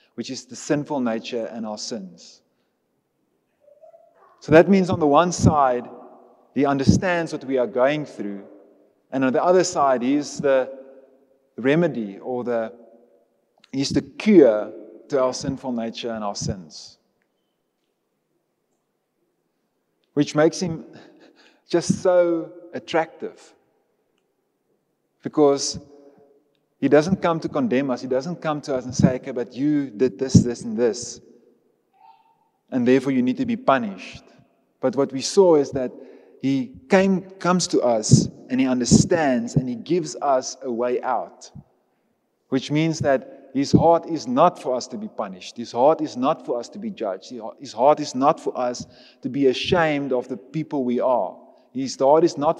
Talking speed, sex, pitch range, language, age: 155 wpm, male, 130-180 Hz, English, 30-49